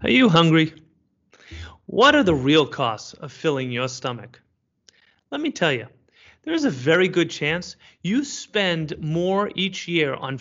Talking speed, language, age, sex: 155 wpm, English, 30-49, male